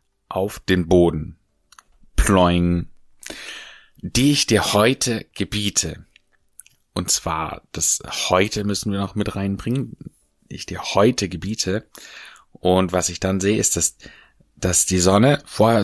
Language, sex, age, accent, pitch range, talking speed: German, male, 30-49, German, 90-110 Hz, 125 wpm